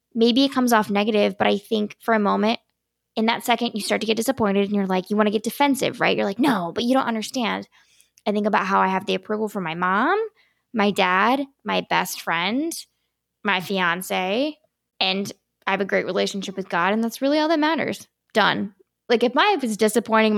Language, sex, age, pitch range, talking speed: English, female, 10-29, 205-270 Hz, 220 wpm